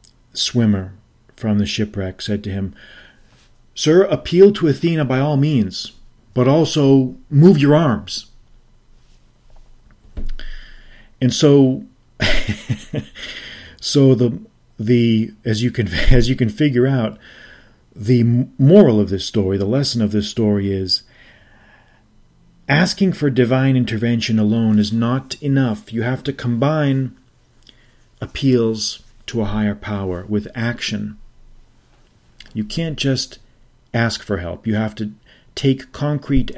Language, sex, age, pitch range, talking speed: English, male, 40-59, 105-130 Hz, 120 wpm